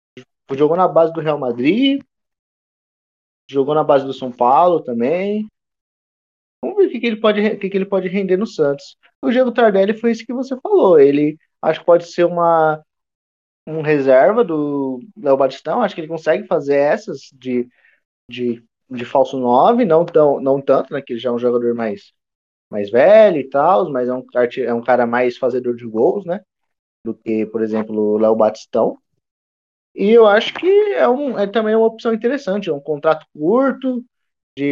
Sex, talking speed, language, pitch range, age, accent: male, 180 wpm, Portuguese, 135-220 Hz, 20-39, Brazilian